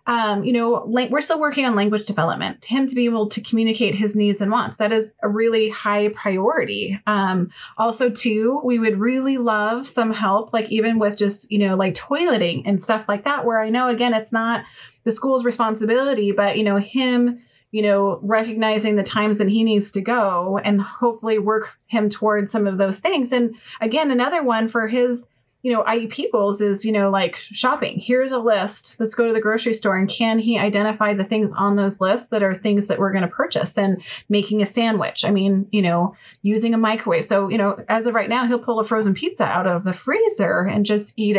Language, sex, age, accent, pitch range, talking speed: English, female, 30-49, American, 205-240 Hz, 215 wpm